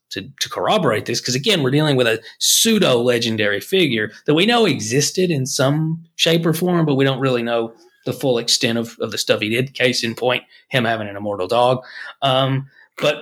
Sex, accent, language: male, American, English